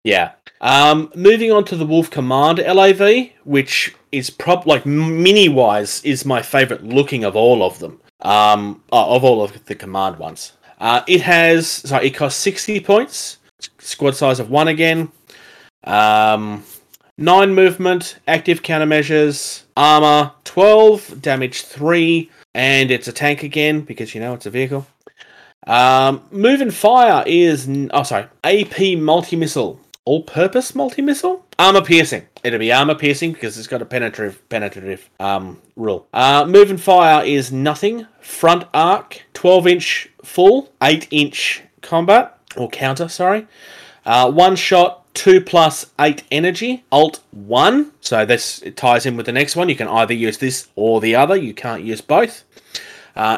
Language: English